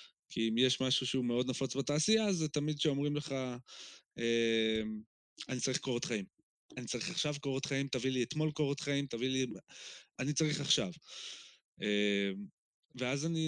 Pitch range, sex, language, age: 115-150 Hz, male, Hebrew, 20-39